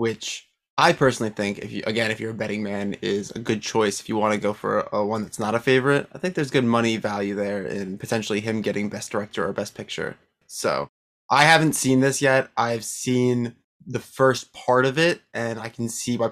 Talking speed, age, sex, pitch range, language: 230 wpm, 20-39, male, 110-130 Hz, English